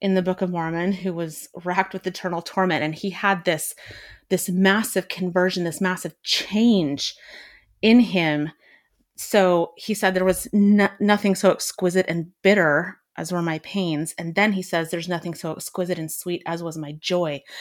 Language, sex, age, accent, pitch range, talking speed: English, female, 30-49, American, 165-195 Hz, 175 wpm